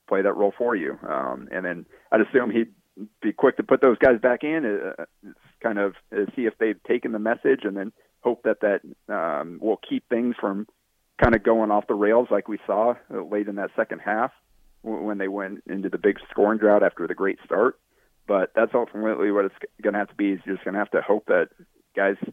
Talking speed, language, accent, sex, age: 225 wpm, English, American, male, 40-59